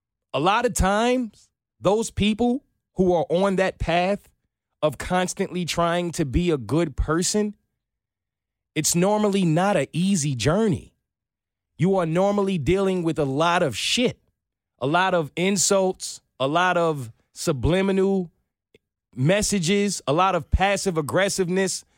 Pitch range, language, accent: 135-200 Hz, English, American